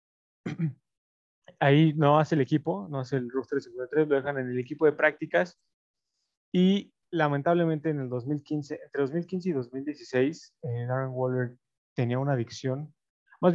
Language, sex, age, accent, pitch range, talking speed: Spanish, male, 20-39, Mexican, 125-155 Hz, 145 wpm